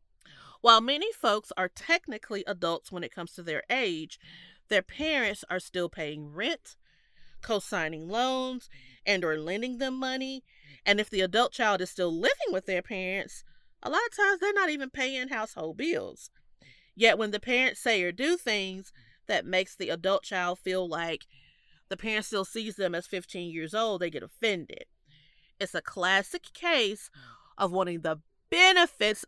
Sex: female